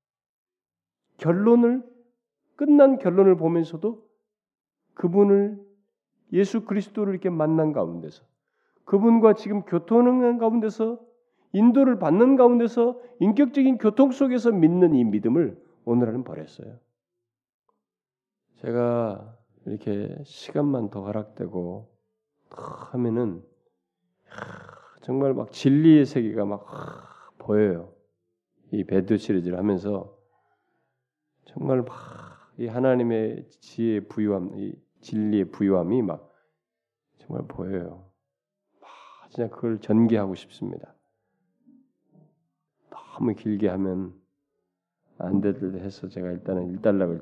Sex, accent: male, native